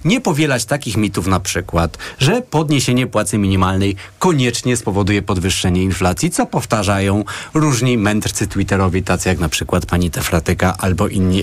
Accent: native